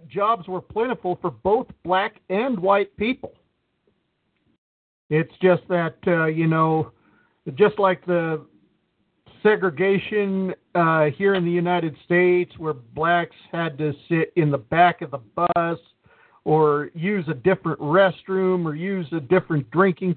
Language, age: English, 50-69